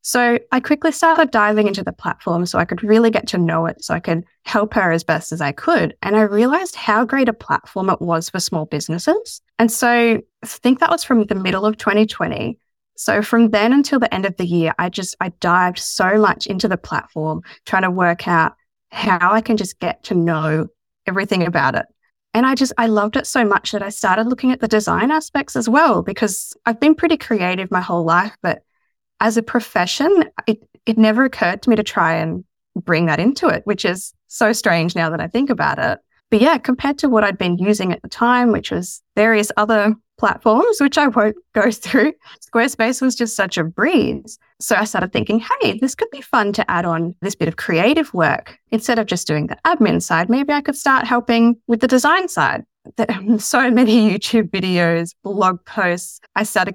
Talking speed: 215 wpm